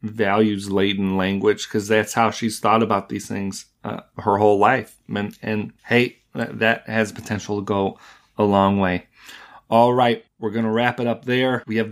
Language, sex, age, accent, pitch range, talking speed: English, male, 30-49, American, 105-115 Hz, 180 wpm